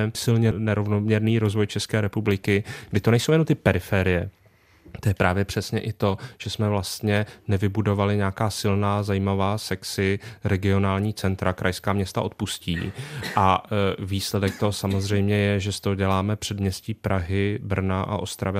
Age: 30-49